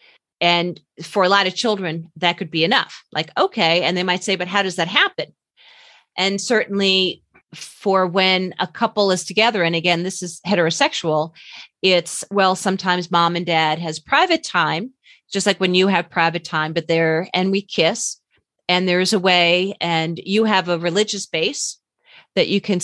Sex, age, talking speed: female, 40-59, 180 wpm